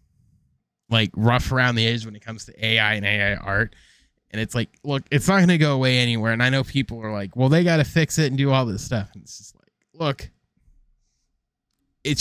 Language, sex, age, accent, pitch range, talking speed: English, male, 20-39, American, 110-140 Hz, 230 wpm